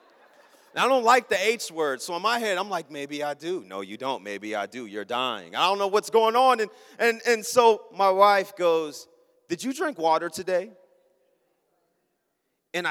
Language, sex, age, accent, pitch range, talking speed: English, male, 30-49, American, 195-245 Hz, 195 wpm